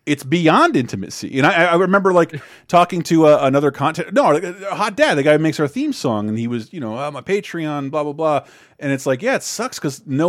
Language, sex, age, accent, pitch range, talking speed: English, male, 30-49, American, 125-175 Hz, 240 wpm